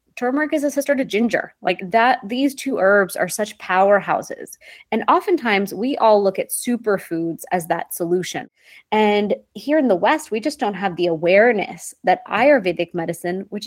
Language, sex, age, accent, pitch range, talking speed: English, female, 20-39, American, 180-235 Hz, 170 wpm